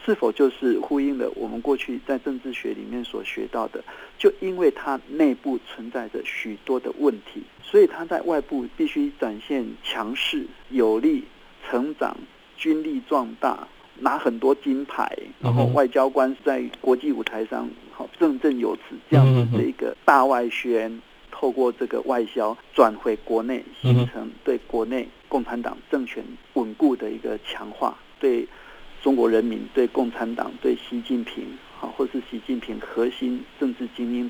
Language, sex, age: Chinese, male, 50-69